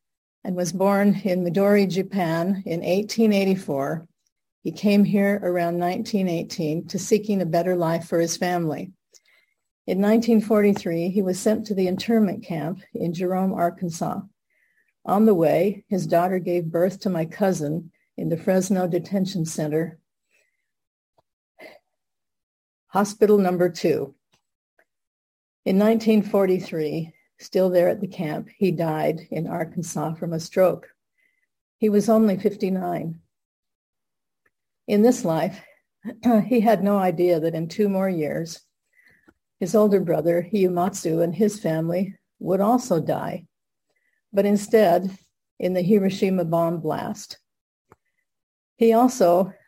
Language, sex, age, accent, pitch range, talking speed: English, female, 50-69, American, 170-205 Hz, 120 wpm